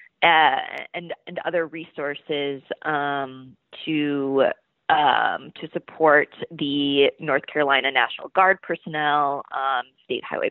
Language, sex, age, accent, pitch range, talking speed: English, female, 20-39, American, 145-165 Hz, 110 wpm